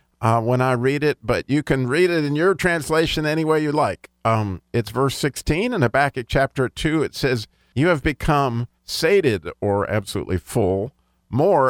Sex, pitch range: male, 110-140 Hz